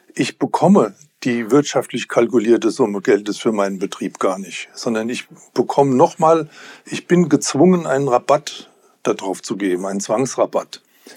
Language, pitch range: German, 115-155 Hz